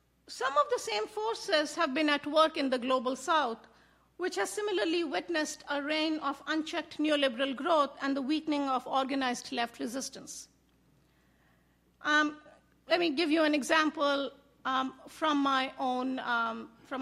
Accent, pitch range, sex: Indian, 255-300 Hz, female